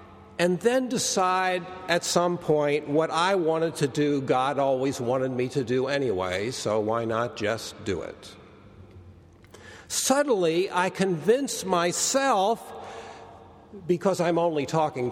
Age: 60-79